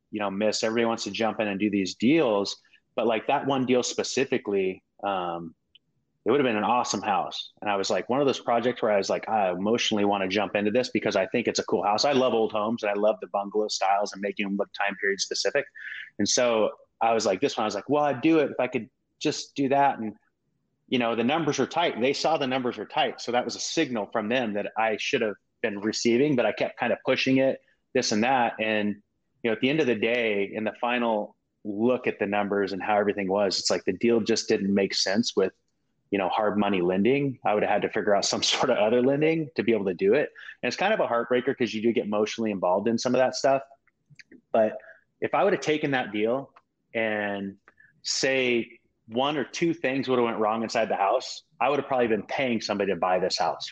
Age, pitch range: 30-49, 105-130 Hz